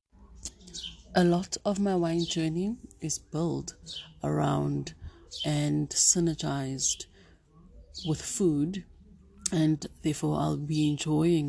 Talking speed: 95 wpm